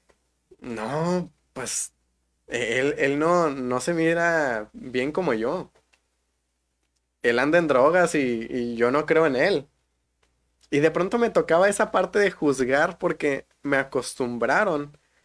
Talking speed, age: 135 wpm, 20-39